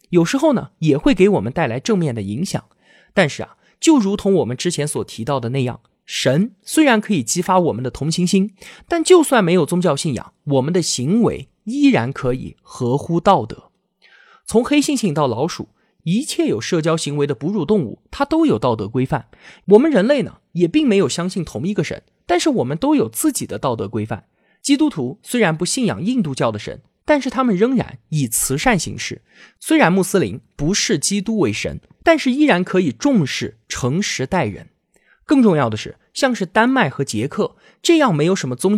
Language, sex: Chinese, male